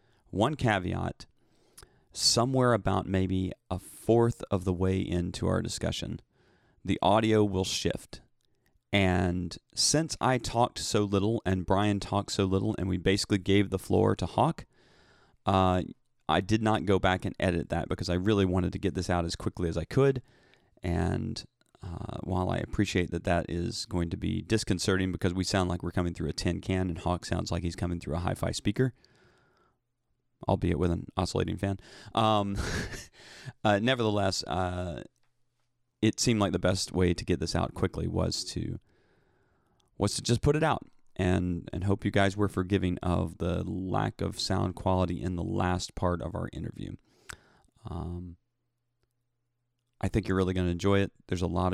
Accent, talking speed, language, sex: American, 175 wpm, English, male